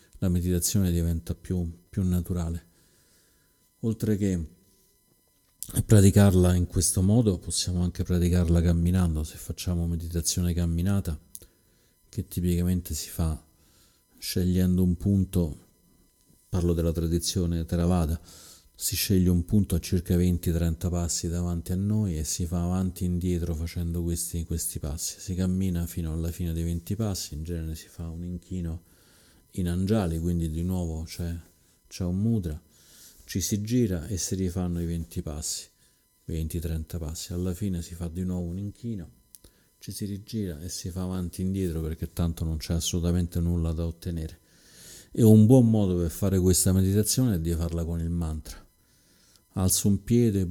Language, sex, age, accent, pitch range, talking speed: Italian, male, 40-59, native, 85-95 Hz, 150 wpm